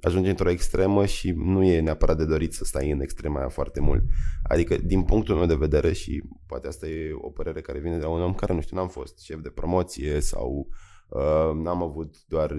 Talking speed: 225 wpm